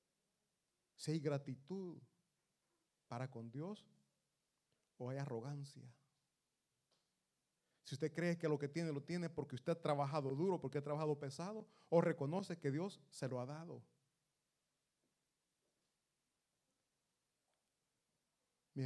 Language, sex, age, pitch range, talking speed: Italian, male, 40-59, 145-190 Hz, 115 wpm